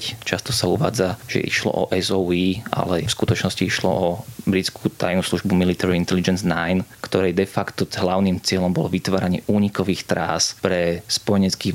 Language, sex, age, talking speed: Slovak, male, 20-39, 150 wpm